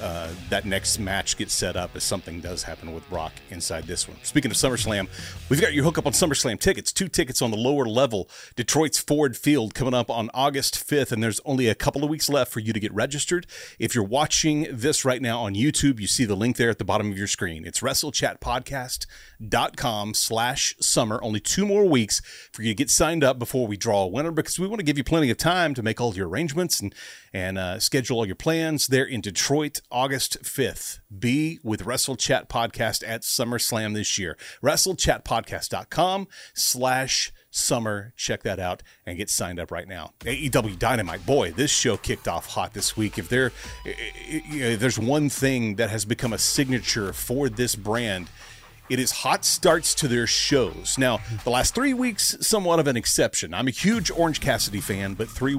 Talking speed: 200 wpm